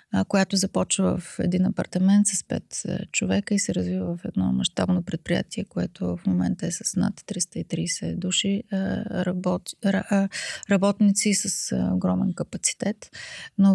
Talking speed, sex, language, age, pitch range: 125 wpm, female, Bulgarian, 30-49, 180-210 Hz